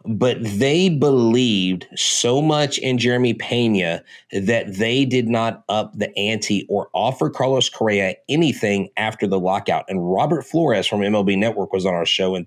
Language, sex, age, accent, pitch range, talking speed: English, male, 30-49, American, 95-120 Hz, 165 wpm